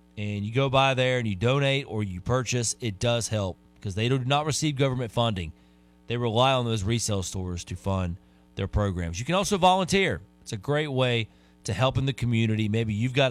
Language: English